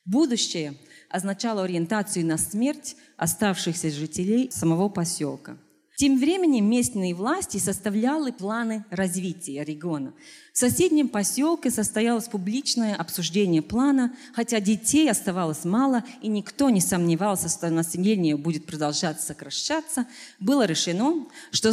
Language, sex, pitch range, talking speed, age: Russian, female, 175-255 Hz, 110 wpm, 30-49